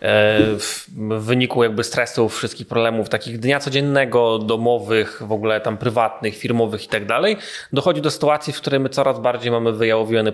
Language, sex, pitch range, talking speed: Polish, male, 115-145 Hz, 165 wpm